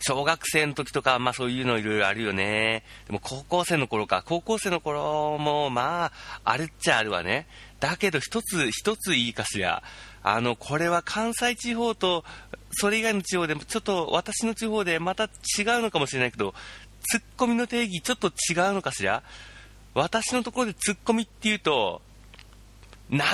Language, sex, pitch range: Japanese, male, 105-175 Hz